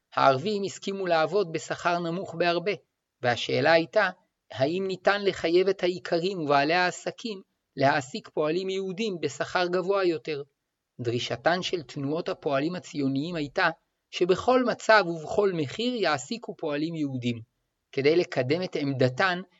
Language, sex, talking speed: Hebrew, male, 115 wpm